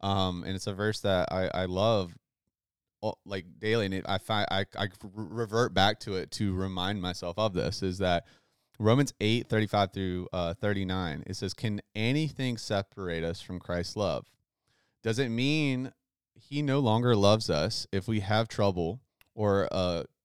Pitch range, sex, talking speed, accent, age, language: 95-115 Hz, male, 180 wpm, American, 30-49, English